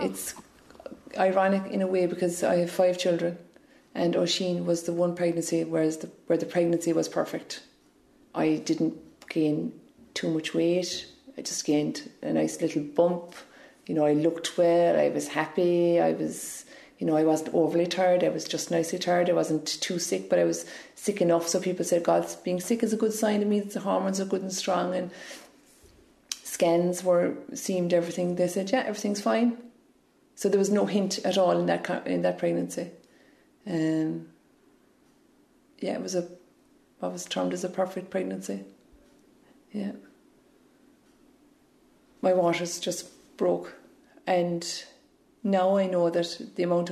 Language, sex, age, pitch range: English, female, 30-49, 170-215 Hz